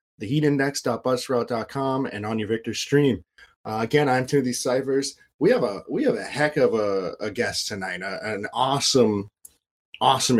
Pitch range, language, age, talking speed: 110-135 Hz, English, 20-39, 140 wpm